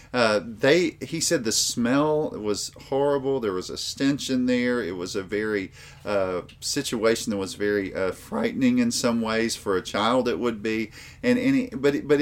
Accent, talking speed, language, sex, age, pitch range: American, 190 wpm, English, male, 40-59, 105-145 Hz